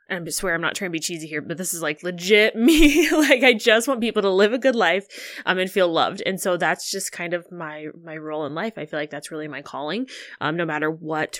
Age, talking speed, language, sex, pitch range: 20-39, 270 wpm, English, female, 160-220 Hz